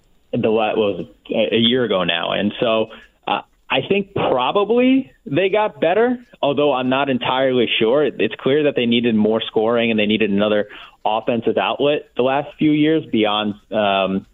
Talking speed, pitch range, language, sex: 165 wpm, 105-135 Hz, English, male